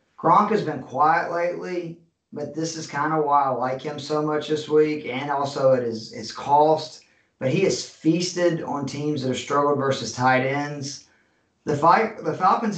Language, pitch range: English, 135-155 Hz